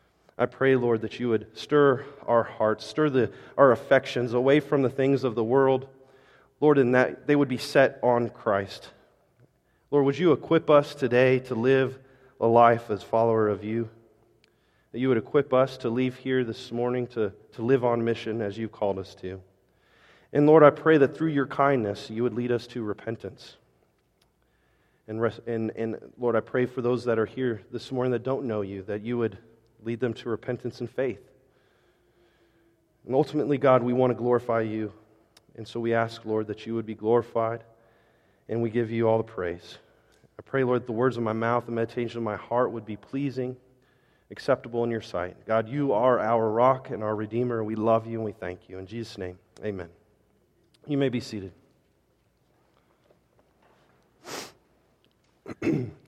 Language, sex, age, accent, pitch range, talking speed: English, male, 40-59, American, 110-130 Hz, 185 wpm